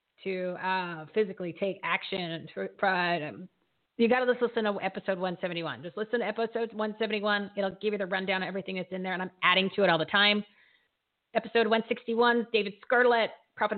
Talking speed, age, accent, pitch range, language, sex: 185 wpm, 40-59, American, 200-255 Hz, English, female